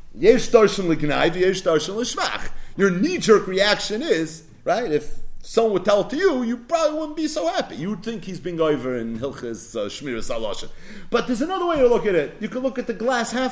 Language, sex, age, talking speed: English, male, 30-49, 190 wpm